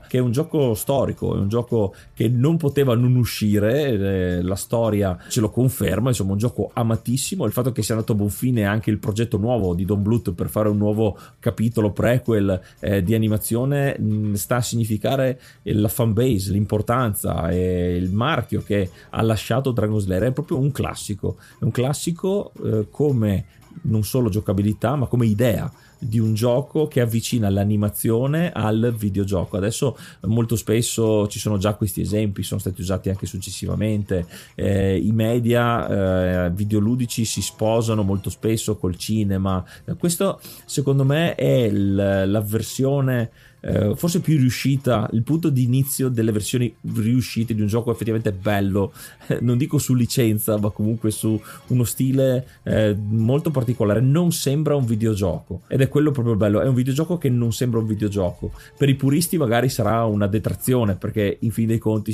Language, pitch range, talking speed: Italian, 105-125 Hz, 165 wpm